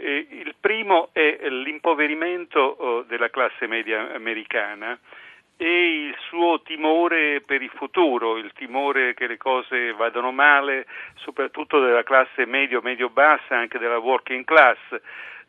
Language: Italian